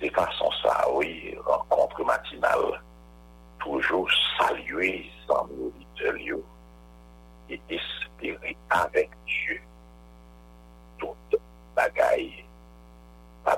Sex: male